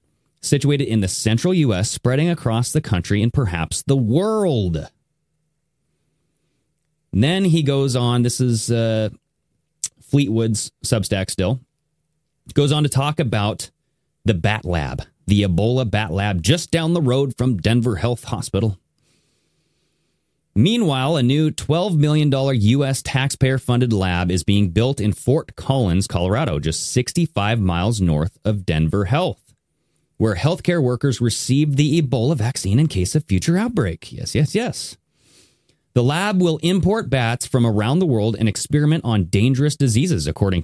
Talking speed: 140 wpm